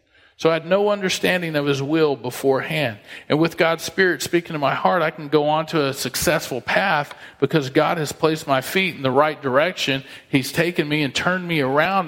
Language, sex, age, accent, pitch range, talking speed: English, male, 40-59, American, 120-155 Hz, 210 wpm